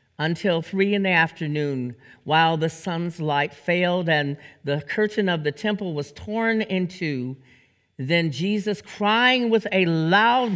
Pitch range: 115-185 Hz